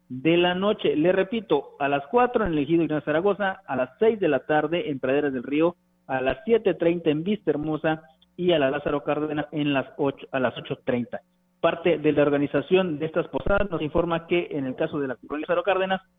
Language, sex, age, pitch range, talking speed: Spanish, male, 40-59, 135-175 Hz, 220 wpm